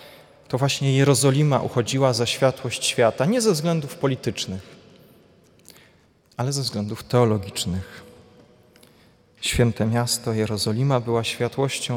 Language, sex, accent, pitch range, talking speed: Polish, male, native, 110-140 Hz, 100 wpm